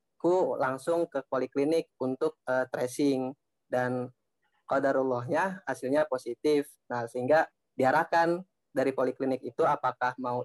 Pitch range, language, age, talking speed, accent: 125-150 Hz, Indonesian, 20-39, 110 wpm, native